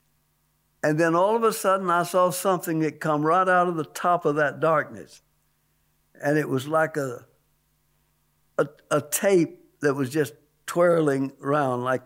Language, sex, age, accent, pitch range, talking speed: English, male, 60-79, American, 145-180 Hz, 165 wpm